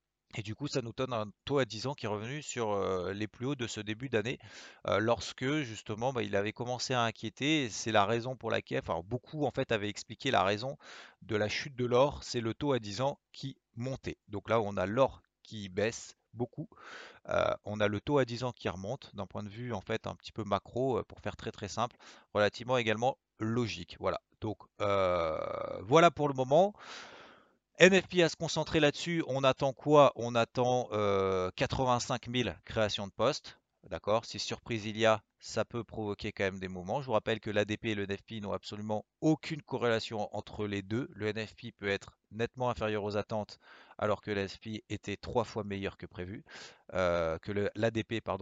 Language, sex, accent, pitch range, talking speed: French, male, French, 100-125 Hz, 195 wpm